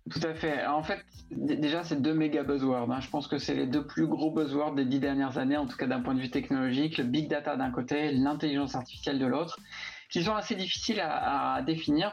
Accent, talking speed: French, 245 wpm